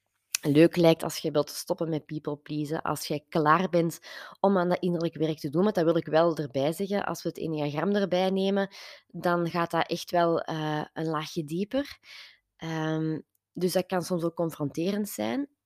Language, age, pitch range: Dutch, 20-39, 155-180 Hz